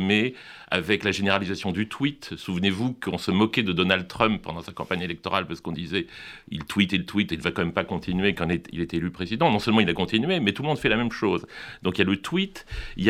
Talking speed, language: 270 wpm, French